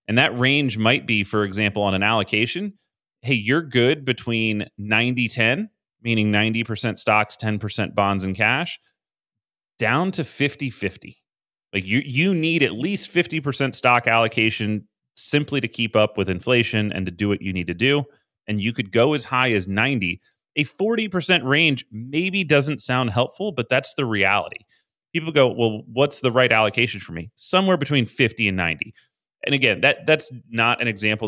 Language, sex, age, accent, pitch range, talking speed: English, male, 30-49, American, 105-140 Hz, 170 wpm